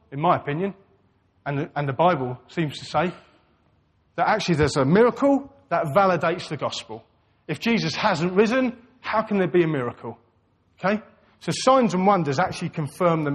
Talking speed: 160 wpm